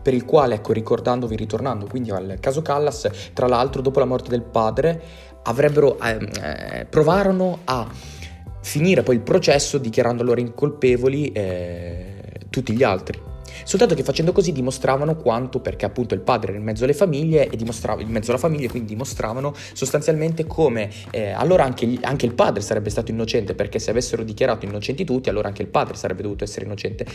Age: 20-39